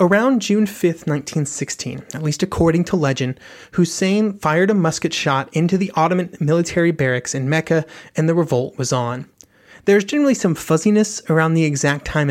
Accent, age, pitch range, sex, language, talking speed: American, 30-49, 145-195 Hz, male, English, 170 wpm